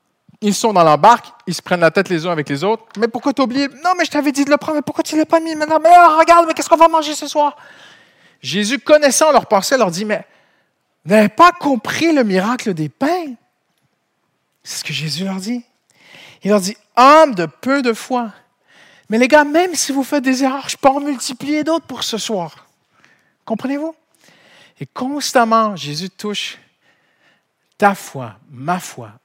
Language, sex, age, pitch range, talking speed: French, male, 50-69, 170-285 Hz, 220 wpm